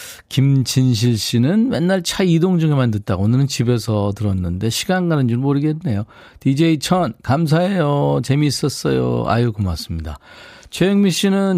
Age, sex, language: 40-59, male, Korean